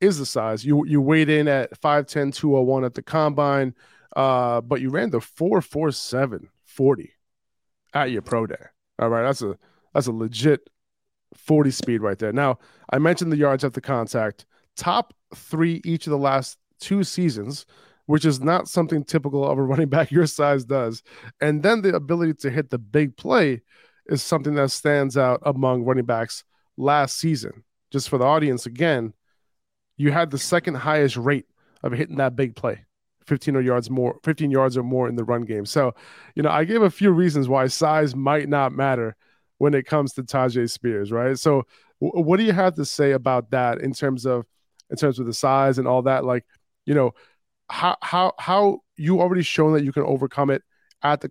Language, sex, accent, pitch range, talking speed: English, male, American, 130-150 Hz, 200 wpm